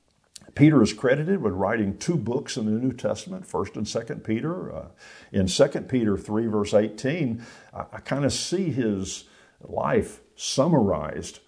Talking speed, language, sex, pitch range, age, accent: 155 wpm, English, male, 100-130 Hz, 50-69, American